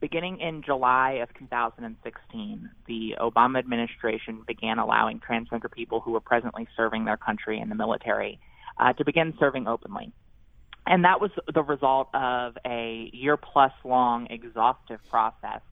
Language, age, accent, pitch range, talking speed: English, 20-39, American, 115-135 Hz, 135 wpm